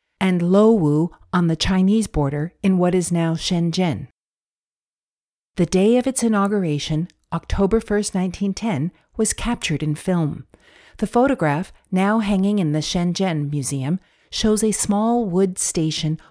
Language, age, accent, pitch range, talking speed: English, 50-69, American, 155-205 Hz, 135 wpm